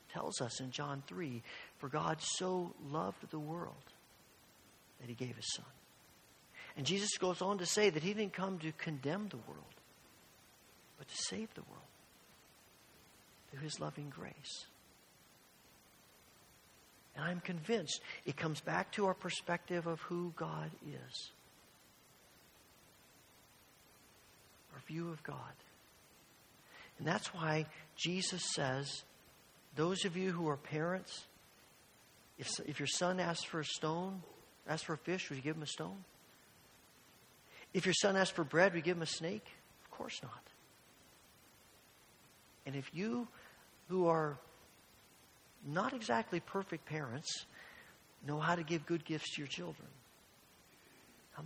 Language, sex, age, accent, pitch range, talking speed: English, male, 50-69, American, 150-185 Hz, 140 wpm